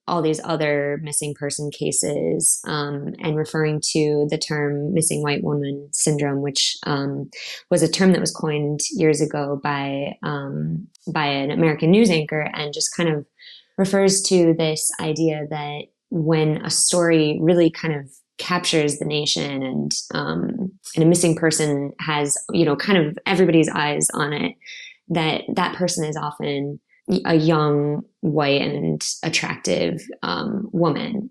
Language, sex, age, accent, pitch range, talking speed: English, female, 20-39, American, 145-170 Hz, 150 wpm